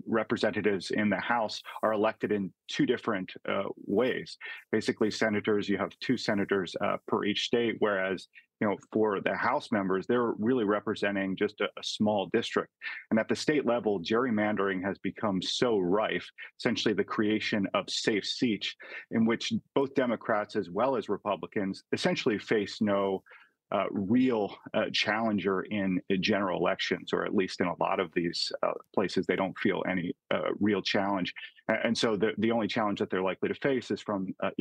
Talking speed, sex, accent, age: 175 wpm, male, American, 30-49